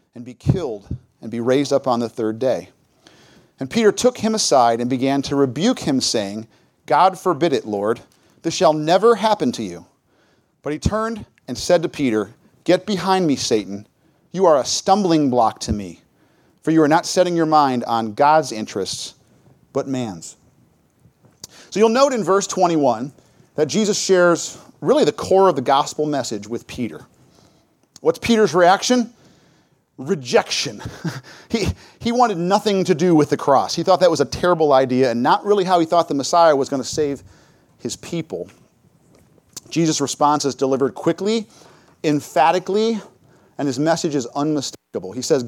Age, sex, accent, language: 40-59, male, American, English